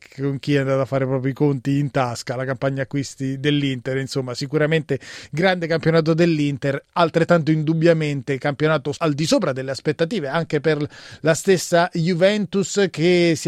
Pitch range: 135-160 Hz